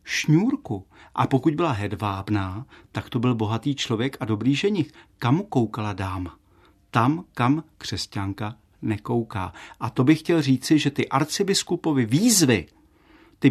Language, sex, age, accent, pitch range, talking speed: Czech, male, 50-69, native, 110-145 Hz, 135 wpm